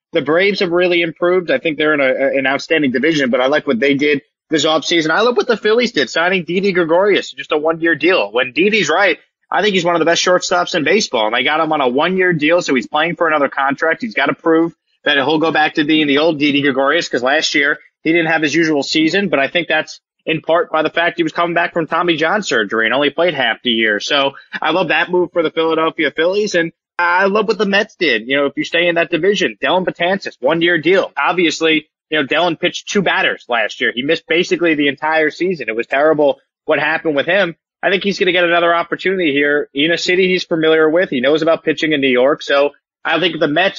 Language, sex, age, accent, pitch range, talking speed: English, male, 20-39, American, 145-175 Hz, 250 wpm